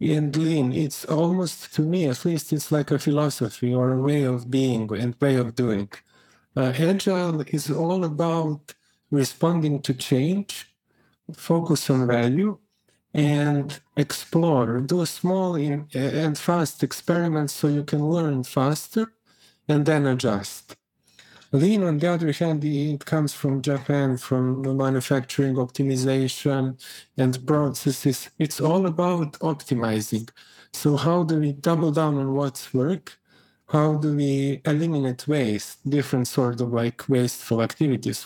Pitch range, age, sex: 130-155 Hz, 50-69, male